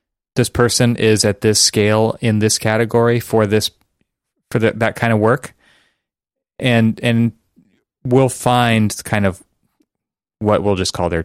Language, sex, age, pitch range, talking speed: English, male, 30-49, 95-115 Hz, 150 wpm